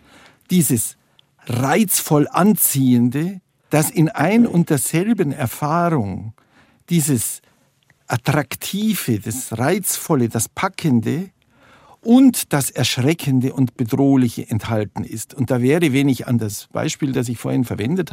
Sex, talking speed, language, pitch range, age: male, 110 wpm, German, 125-170 Hz, 50-69